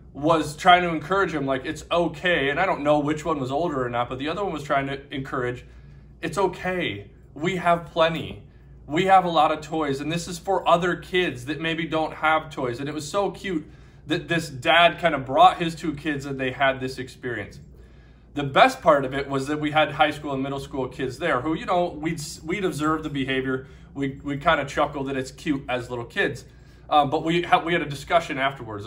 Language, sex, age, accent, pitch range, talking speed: English, male, 20-39, American, 135-170 Hz, 230 wpm